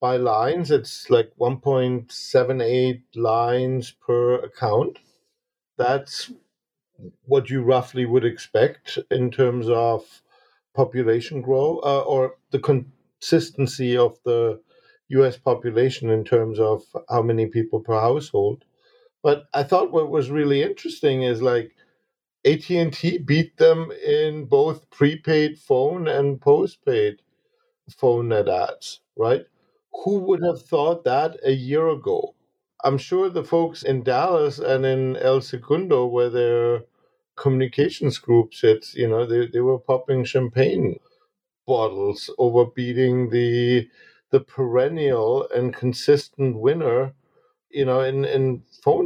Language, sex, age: English, male, 50-69